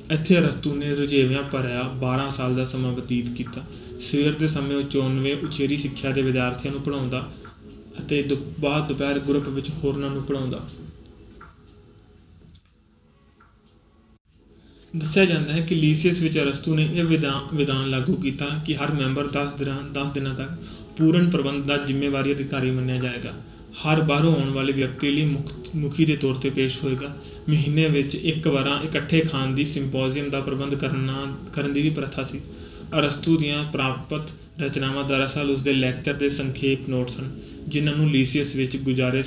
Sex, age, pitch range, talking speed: male, 30-49, 130-150 Hz, 140 wpm